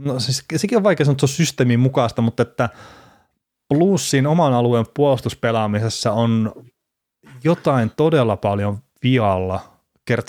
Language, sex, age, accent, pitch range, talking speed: Finnish, male, 30-49, native, 100-130 Hz, 135 wpm